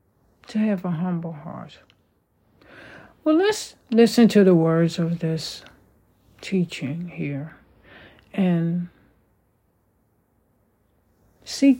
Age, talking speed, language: 60-79, 85 wpm, English